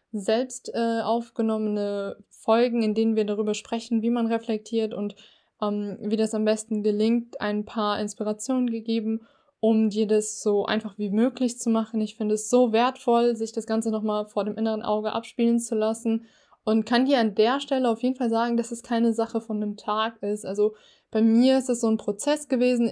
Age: 20-39